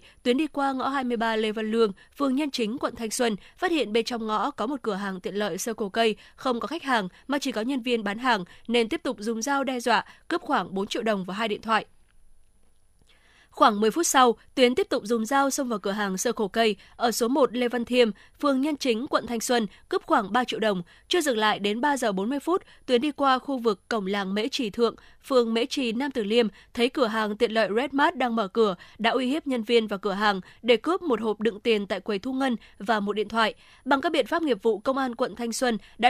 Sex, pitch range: female, 220-270 Hz